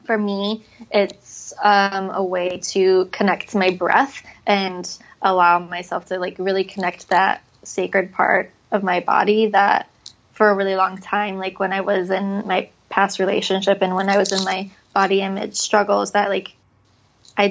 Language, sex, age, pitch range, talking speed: English, female, 20-39, 185-210 Hz, 170 wpm